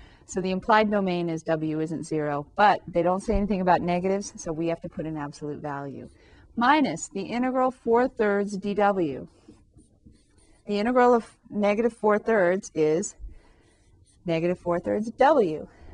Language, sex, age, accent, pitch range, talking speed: English, female, 30-49, American, 165-215 Hz, 150 wpm